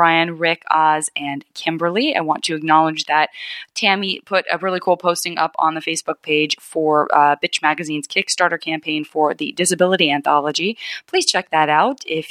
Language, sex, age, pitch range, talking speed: English, female, 20-39, 150-180 Hz, 175 wpm